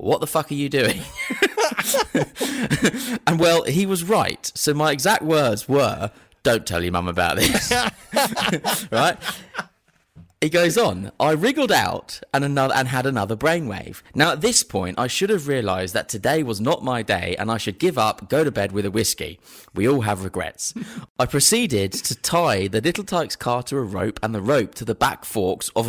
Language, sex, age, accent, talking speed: English, male, 30-49, British, 190 wpm